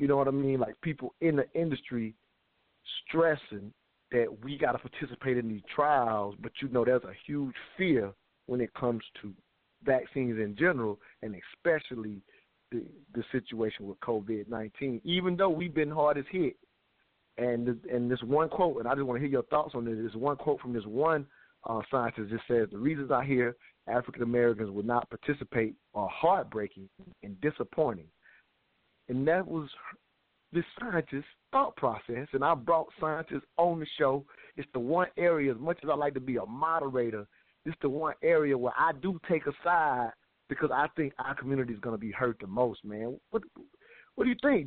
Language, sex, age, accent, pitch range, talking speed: English, male, 40-59, American, 120-160 Hz, 185 wpm